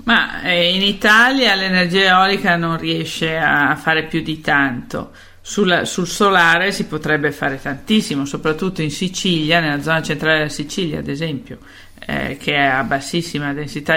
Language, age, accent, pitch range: Italian, 50-69, native, 150-175 Hz